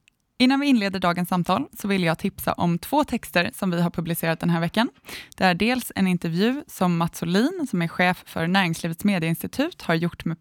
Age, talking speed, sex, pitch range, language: 20-39, 210 wpm, female, 170-205 Hz, Swedish